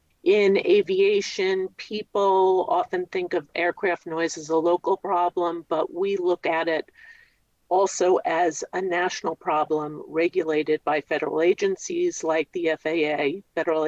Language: English